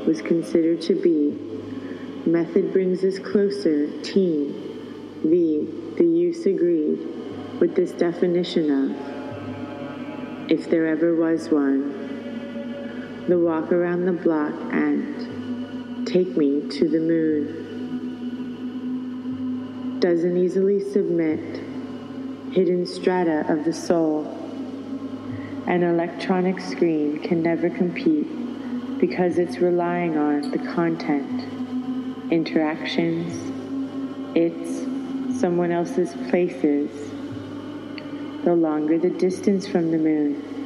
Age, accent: 30-49, American